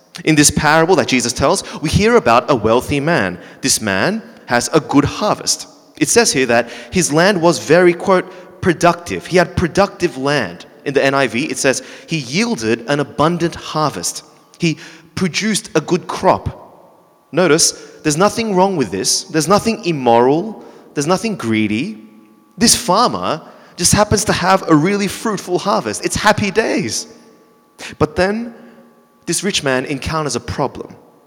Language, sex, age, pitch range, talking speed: English, male, 30-49, 135-190 Hz, 155 wpm